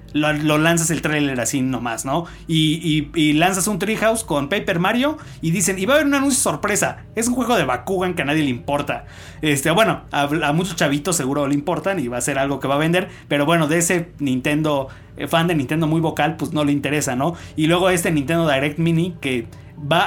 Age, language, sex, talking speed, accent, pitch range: 30-49, Spanish, male, 235 wpm, Mexican, 135-175 Hz